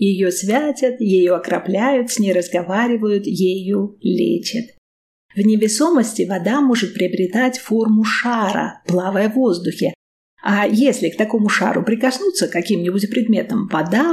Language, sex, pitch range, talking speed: Russian, female, 190-240 Hz, 125 wpm